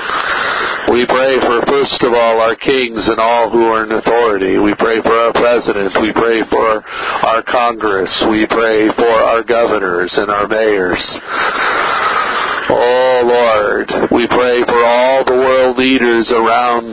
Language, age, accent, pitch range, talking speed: English, 50-69, American, 115-130 Hz, 150 wpm